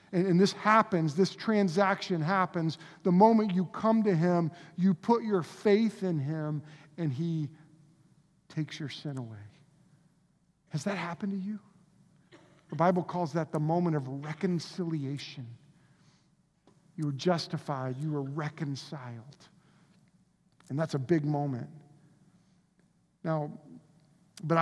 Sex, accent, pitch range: male, American, 155-185 Hz